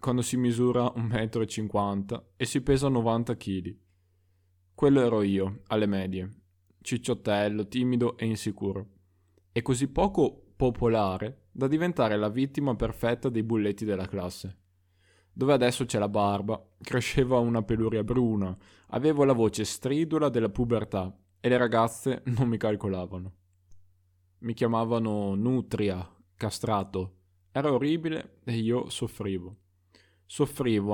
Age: 10-29